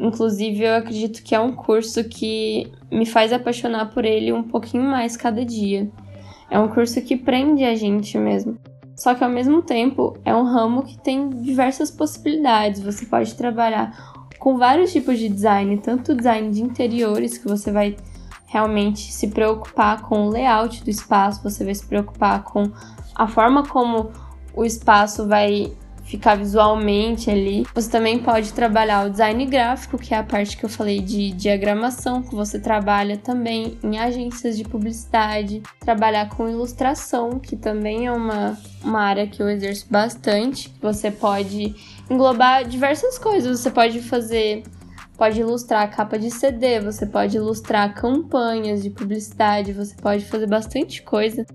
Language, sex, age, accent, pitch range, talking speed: Portuguese, female, 10-29, Brazilian, 210-250 Hz, 160 wpm